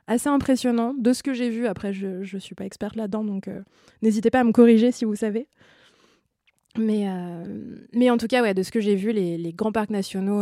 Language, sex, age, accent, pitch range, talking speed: French, female, 20-39, French, 195-240 Hz, 235 wpm